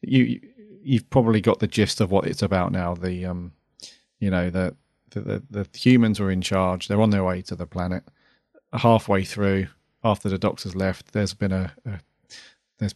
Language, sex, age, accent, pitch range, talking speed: English, male, 40-59, British, 95-110 Hz, 190 wpm